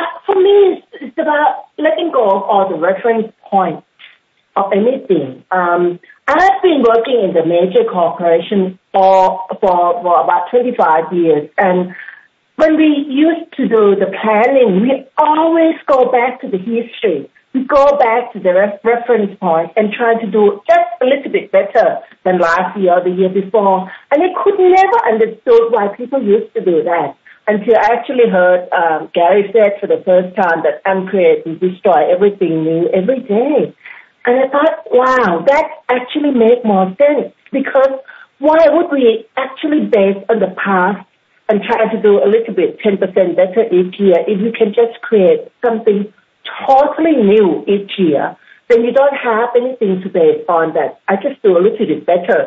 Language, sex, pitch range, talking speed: English, female, 190-280 Hz, 175 wpm